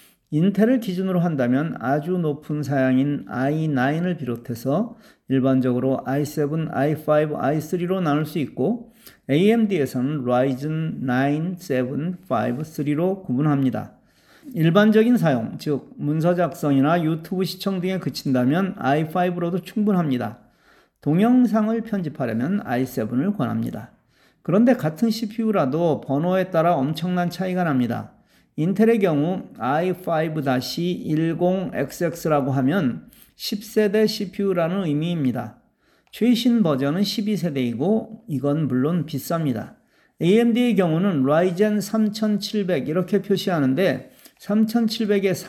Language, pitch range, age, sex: Korean, 140-205 Hz, 40-59, male